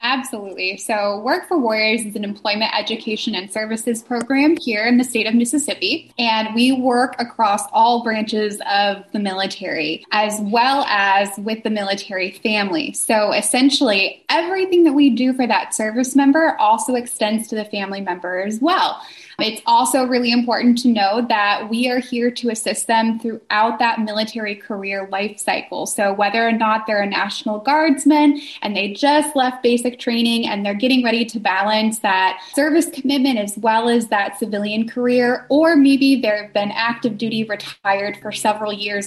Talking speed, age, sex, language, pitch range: 170 wpm, 10-29, female, English, 205-250 Hz